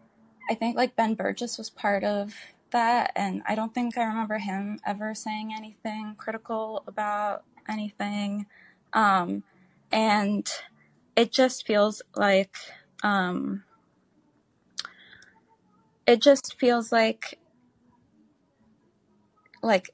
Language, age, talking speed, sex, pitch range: English, 20-39, 100 wpm, female, 195-225 Hz